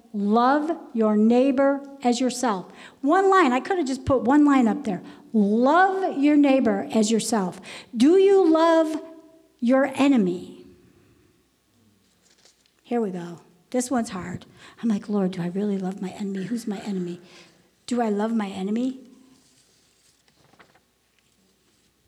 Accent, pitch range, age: American, 205-265 Hz, 60-79